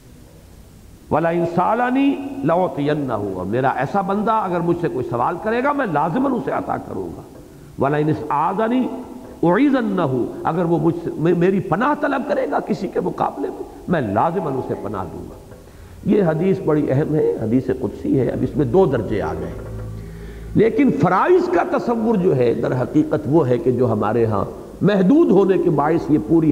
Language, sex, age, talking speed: English, male, 60-79, 130 wpm